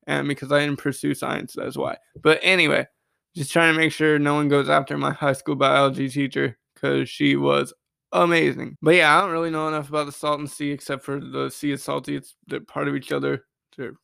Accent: American